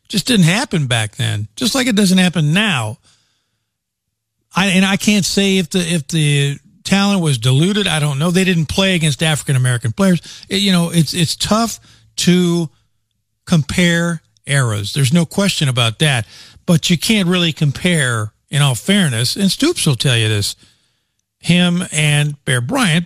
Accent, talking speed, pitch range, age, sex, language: American, 170 wpm, 115-175 Hz, 50-69, male, English